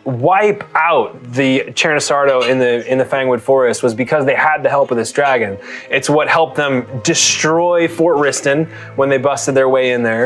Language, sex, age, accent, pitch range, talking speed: English, male, 20-39, American, 125-155 Hz, 195 wpm